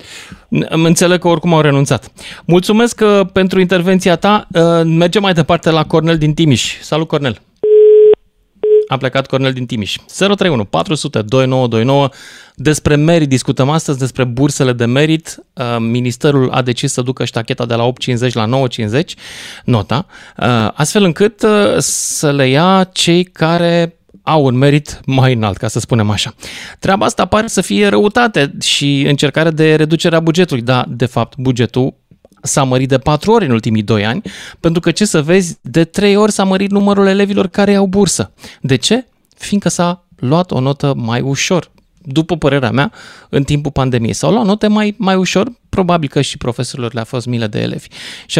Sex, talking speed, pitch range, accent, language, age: male, 165 wpm, 125-180 Hz, native, Romanian, 30-49